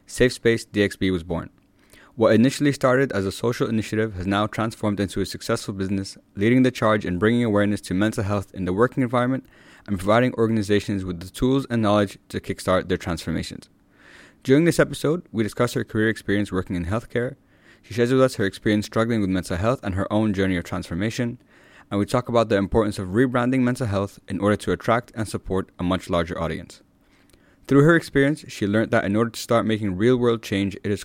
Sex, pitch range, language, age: male, 95-120 Hz, English, 20-39